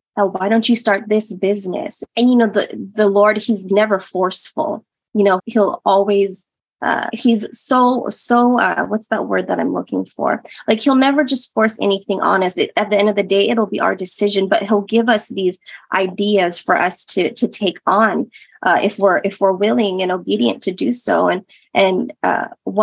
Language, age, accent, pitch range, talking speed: English, 20-39, American, 195-220 Hz, 200 wpm